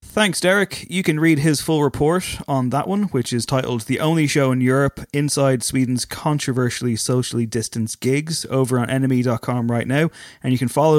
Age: 20-39